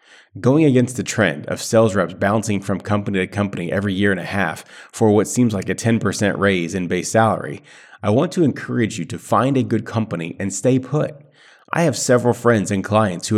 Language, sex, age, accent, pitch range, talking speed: English, male, 30-49, American, 95-120 Hz, 210 wpm